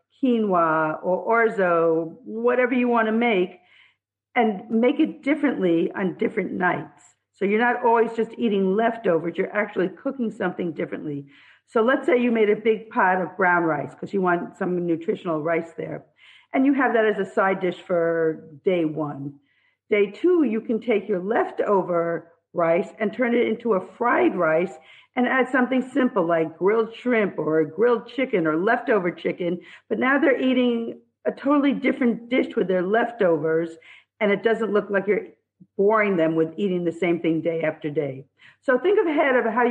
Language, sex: English, female